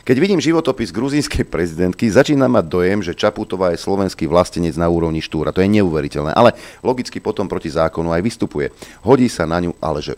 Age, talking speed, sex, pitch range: 40-59, 190 wpm, male, 80-100 Hz